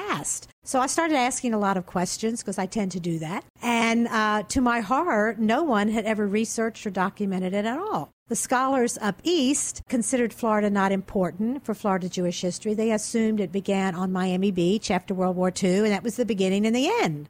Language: English